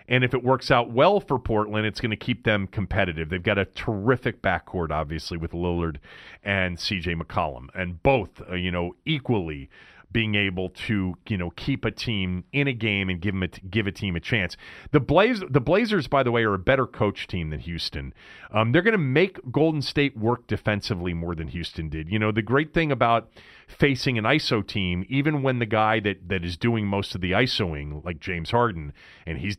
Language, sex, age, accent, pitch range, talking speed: English, male, 40-59, American, 100-150 Hz, 215 wpm